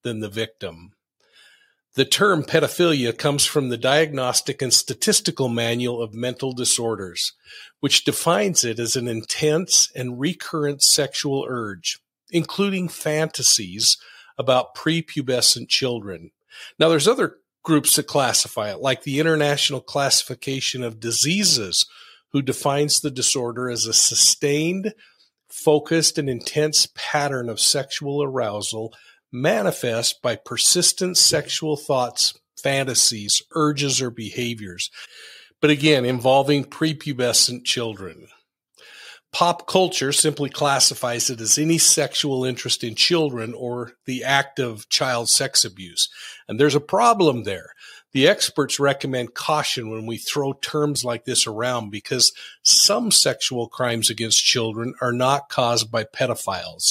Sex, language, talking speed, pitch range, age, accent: male, English, 125 wpm, 120-150 Hz, 50-69, American